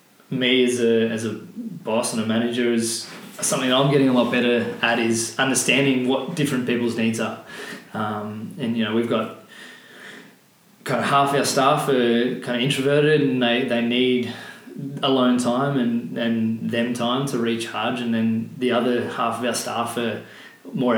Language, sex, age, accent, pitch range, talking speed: English, male, 20-39, Australian, 115-130 Hz, 175 wpm